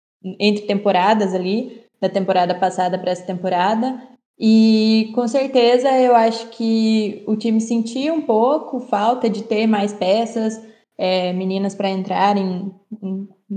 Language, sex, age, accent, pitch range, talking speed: Portuguese, female, 20-39, Brazilian, 200-235 Hz, 135 wpm